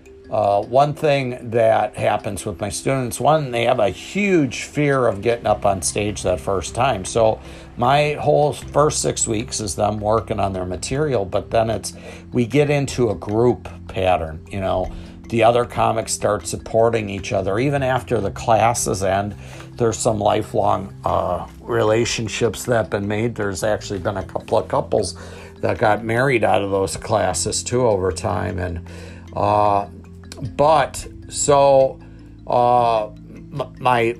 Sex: male